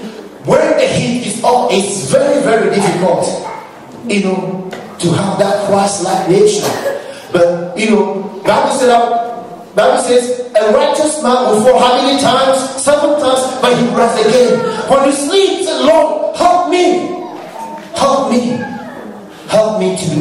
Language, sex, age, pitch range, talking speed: English, male, 40-59, 170-255 Hz, 145 wpm